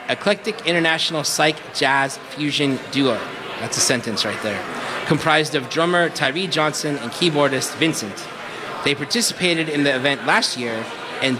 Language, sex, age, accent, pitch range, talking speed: English, male, 30-49, American, 130-165 Hz, 140 wpm